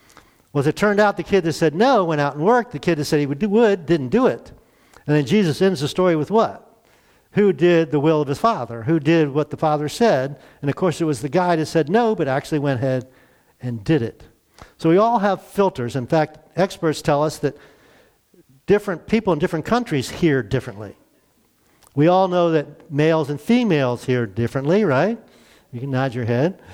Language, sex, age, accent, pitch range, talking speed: English, male, 50-69, American, 130-175 Hz, 215 wpm